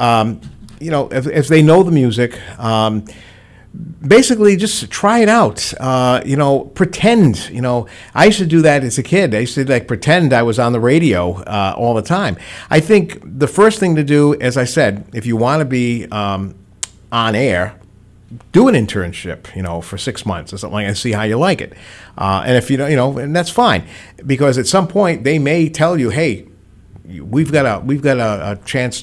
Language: English